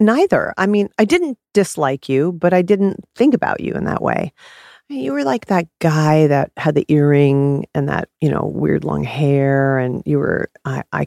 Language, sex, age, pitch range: English, female, 40-59, 135-175 Hz